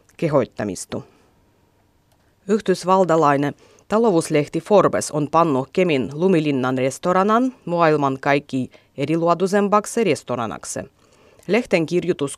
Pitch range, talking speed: 135-195 Hz, 70 wpm